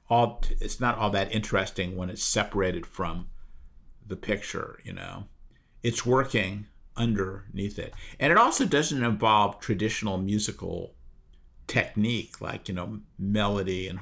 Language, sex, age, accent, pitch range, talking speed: English, male, 50-69, American, 90-110 Hz, 135 wpm